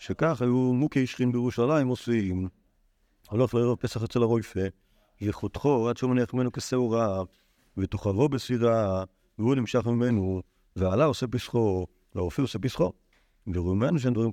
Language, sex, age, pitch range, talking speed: Hebrew, male, 50-69, 100-130 Hz, 130 wpm